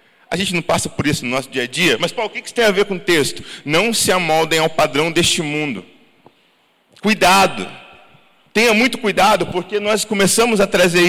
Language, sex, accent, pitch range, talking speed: Portuguese, male, Brazilian, 160-210 Hz, 210 wpm